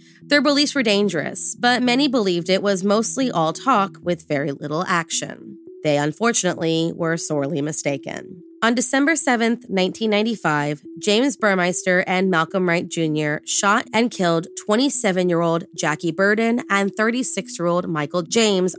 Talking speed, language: 130 wpm, English